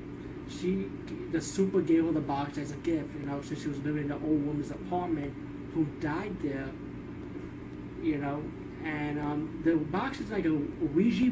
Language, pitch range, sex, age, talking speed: English, 150-175 Hz, male, 30-49, 180 wpm